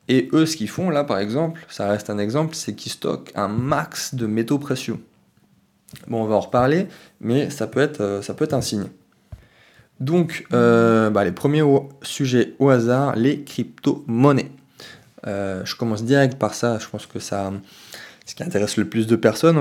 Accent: French